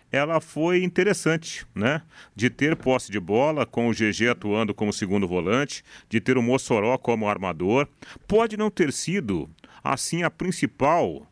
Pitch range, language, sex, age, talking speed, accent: 110-160 Hz, Portuguese, male, 40-59, 155 wpm, Brazilian